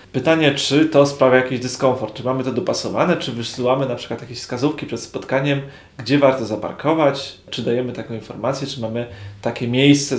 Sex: male